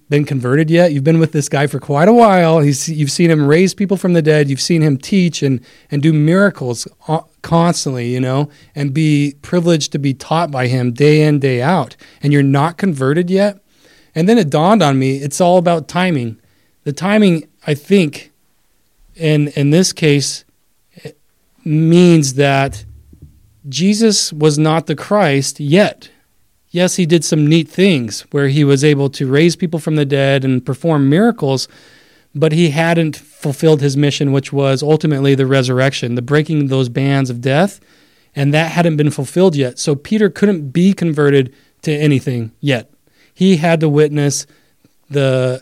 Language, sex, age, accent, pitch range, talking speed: English, male, 30-49, American, 135-165 Hz, 175 wpm